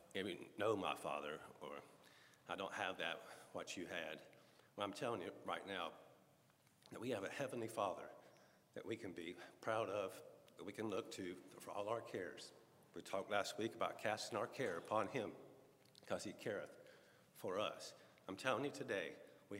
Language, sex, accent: English, male, American